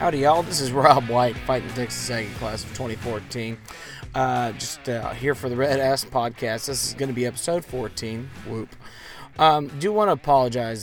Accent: American